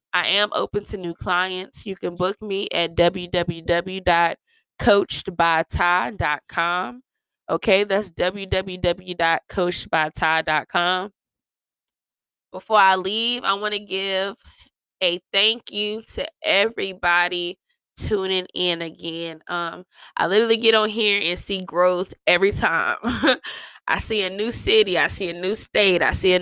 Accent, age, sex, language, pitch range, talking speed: American, 20-39, female, English, 175-200 Hz, 125 wpm